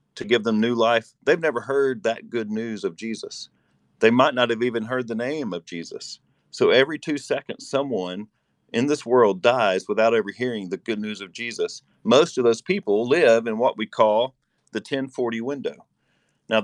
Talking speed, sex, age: 190 wpm, male, 40-59